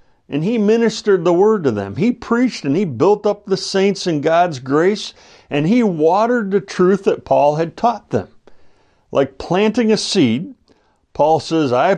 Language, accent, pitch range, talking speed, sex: English, American, 115-180 Hz, 175 wpm, male